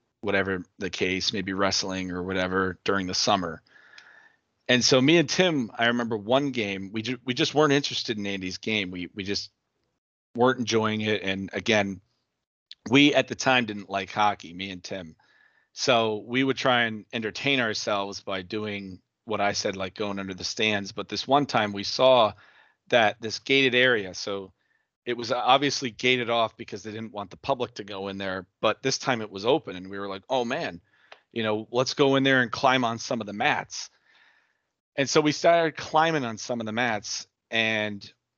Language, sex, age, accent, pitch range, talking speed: English, male, 40-59, American, 100-125 Hz, 195 wpm